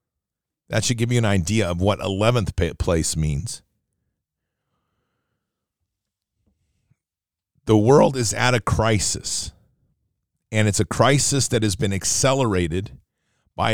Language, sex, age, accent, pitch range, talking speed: English, male, 40-59, American, 95-120 Hz, 115 wpm